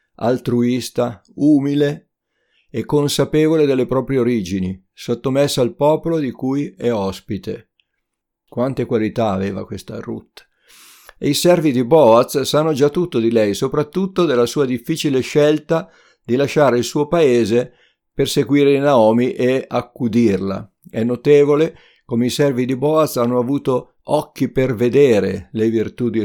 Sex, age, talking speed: male, 50-69, 135 wpm